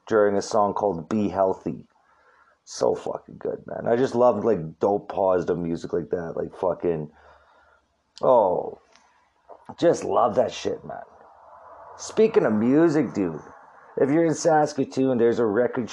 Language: English